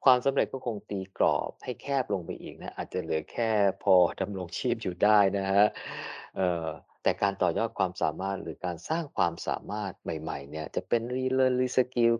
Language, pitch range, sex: Thai, 100-140 Hz, male